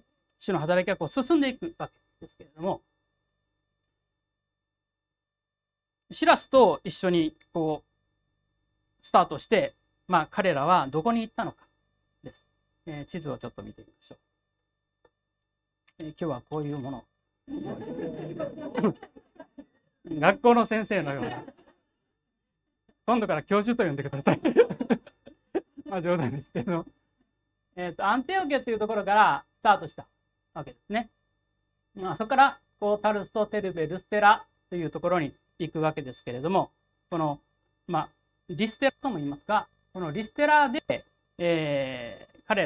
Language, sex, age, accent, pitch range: Japanese, male, 40-59, native, 145-220 Hz